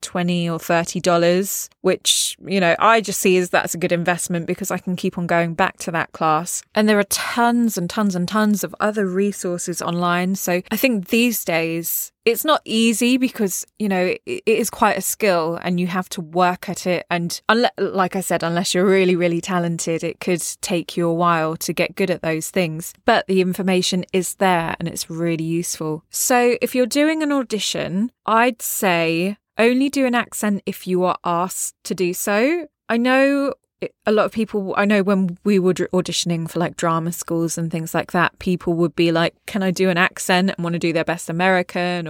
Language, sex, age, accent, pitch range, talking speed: English, female, 20-39, British, 175-210 Hz, 205 wpm